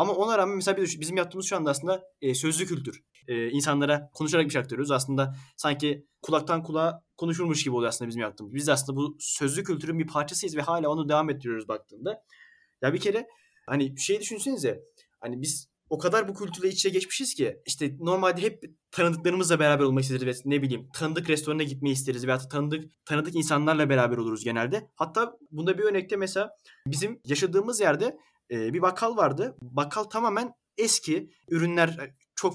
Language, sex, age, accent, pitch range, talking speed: Turkish, male, 20-39, native, 140-190 Hz, 160 wpm